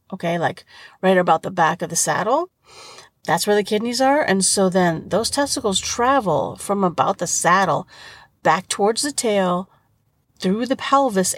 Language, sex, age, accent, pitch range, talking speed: English, female, 40-59, American, 170-235 Hz, 165 wpm